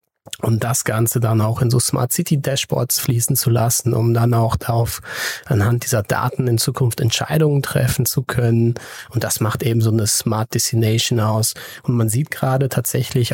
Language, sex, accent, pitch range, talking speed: German, male, German, 120-140 Hz, 170 wpm